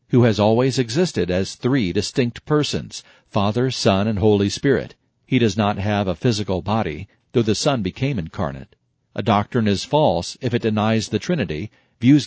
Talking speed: 170 wpm